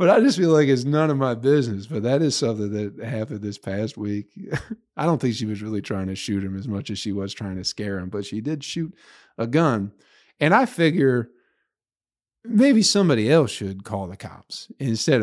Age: 50-69